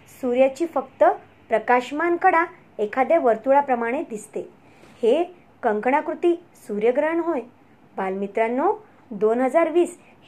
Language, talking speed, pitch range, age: Marathi, 75 wpm, 230-335 Hz, 20-39